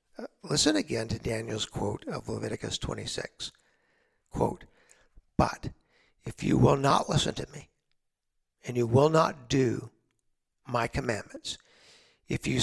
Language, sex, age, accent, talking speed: English, male, 60-79, American, 125 wpm